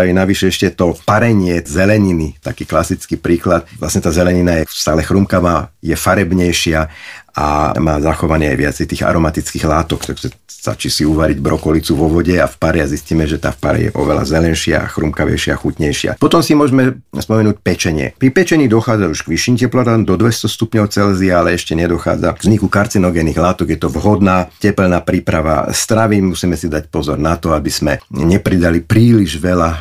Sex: male